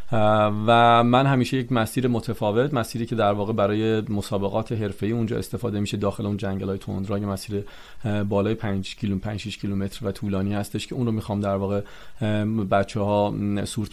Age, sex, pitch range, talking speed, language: 30-49, male, 105-120 Hz, 170 wpm, Persian